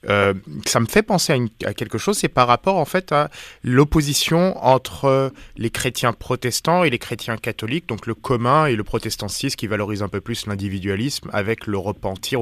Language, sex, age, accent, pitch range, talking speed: English, male, 20-39, French, 110-140 Hz, 195 wpm